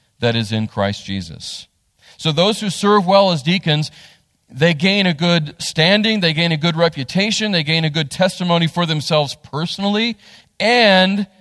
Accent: American